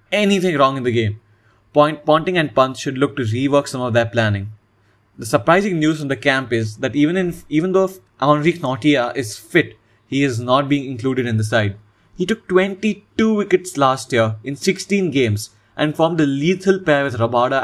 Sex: male